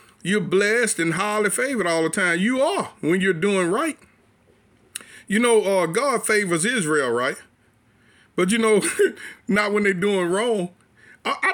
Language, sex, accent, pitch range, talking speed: English, male, American, 165-215 Hz, 160 wpm